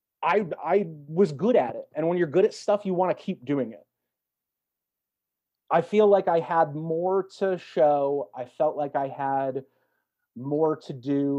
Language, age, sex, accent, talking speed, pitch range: English, 30-49, male, American, 180 wpm, 125-160 Hz